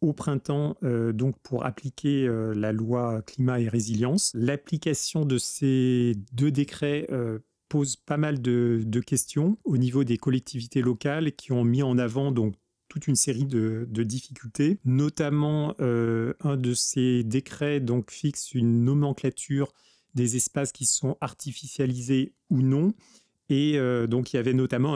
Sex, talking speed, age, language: male, 150 wpm, 30-49, French